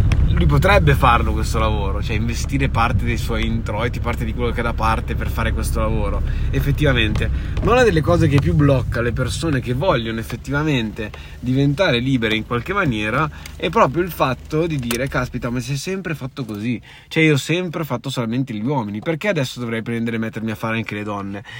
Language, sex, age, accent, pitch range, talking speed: Italian, male, 20-39, native, 115-155 Hz, 200 wpm